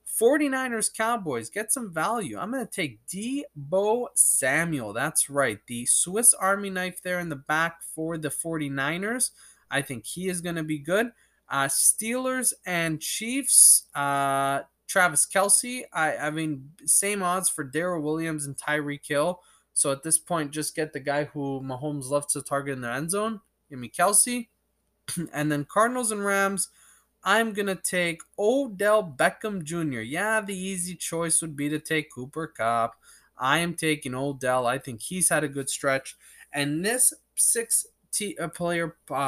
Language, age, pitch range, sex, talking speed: English, 20-39, 145-205 Hz, male, 165 wpm